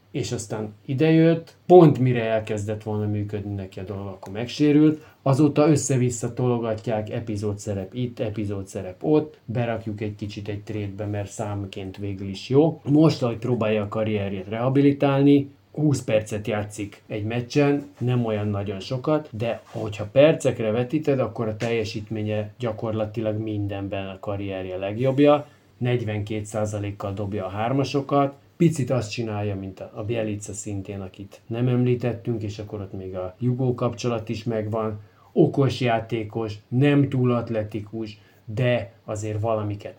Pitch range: 105-125 Hz